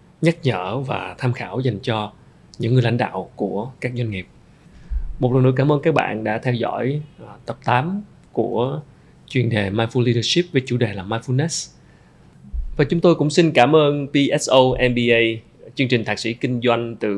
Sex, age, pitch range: male, 20-39, 110-130 Hz